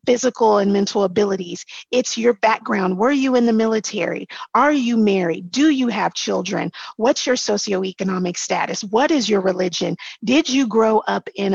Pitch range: 195-250 Hz